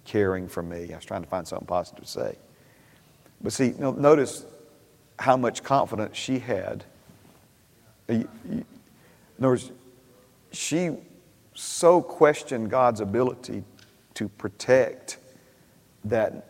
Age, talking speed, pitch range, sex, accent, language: 50-69, 120 wpm, 105-130 Hz, male, American, English